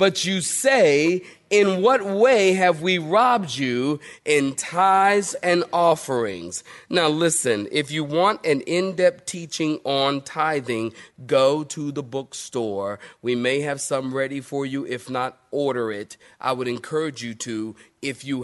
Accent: American